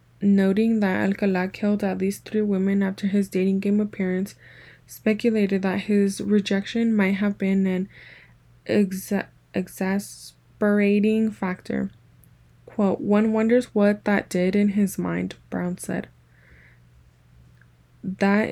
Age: 10-29